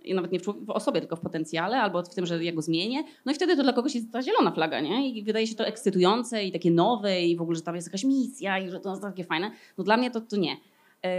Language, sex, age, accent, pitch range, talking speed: Polish, female, 20-39, native, 175-225 Hz, 295 wpm